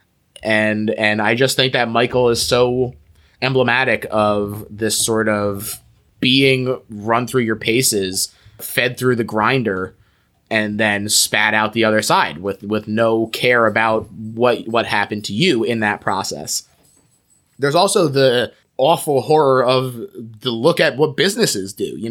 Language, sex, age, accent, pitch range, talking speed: English, male, 20-39, American, 110-150 Hz, 150 wpm